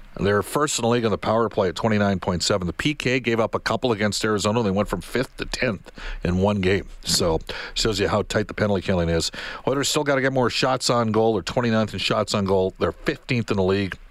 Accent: American